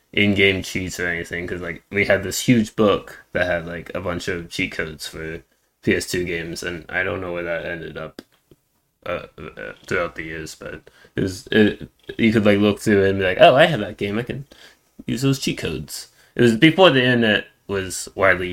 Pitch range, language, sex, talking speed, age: 90-115 Hz, English, male, 205 wpm, 10-29